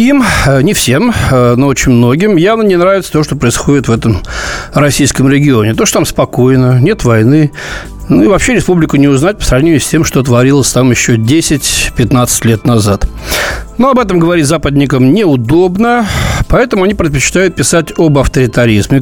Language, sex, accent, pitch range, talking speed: Russian, male, native, 125-170 Hz, 160 wpm